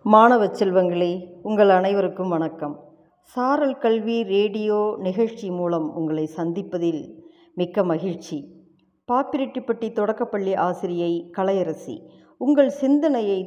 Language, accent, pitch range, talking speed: Tamil, native, 175-235 Hz, 90 wpm